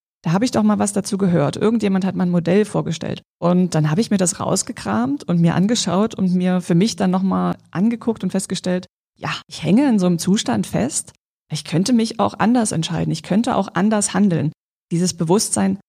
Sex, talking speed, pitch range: female, 200 wpm, 170-200 Hz